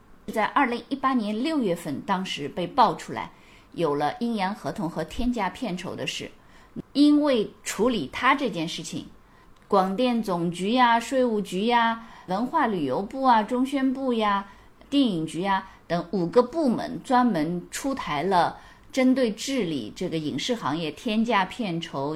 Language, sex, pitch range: Chinese, female, 170-255 Hz